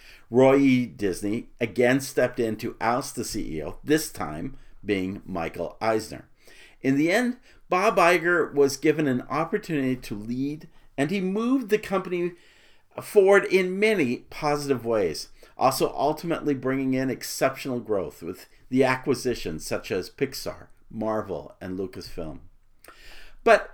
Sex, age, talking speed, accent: male, 50-69, 130 wpm, American